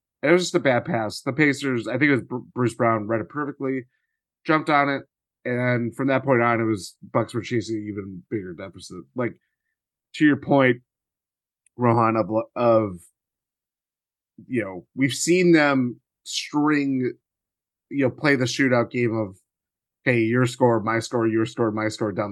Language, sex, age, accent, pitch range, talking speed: English, male, 30-49, American, 115-140 Hz, 170 wpm